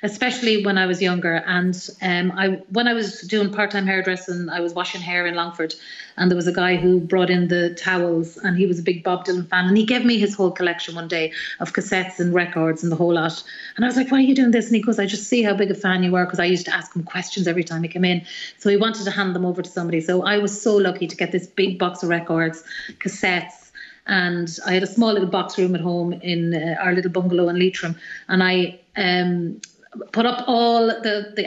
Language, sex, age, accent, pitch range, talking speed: English, female, 30-49, Irish, 180-205 Hz, 255 wpm